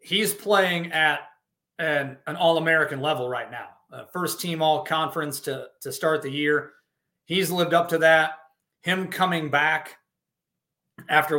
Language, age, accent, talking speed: English, 30-49, American, 140 wpm